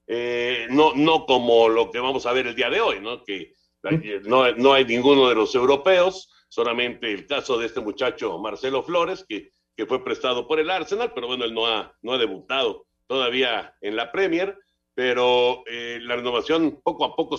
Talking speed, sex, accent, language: 195 wpm, male, Mexican, Spanish